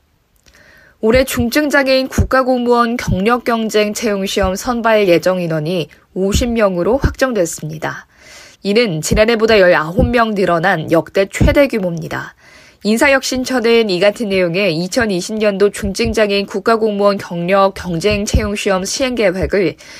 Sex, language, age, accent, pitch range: female, Korean, 20-39, native, 180-240 Hz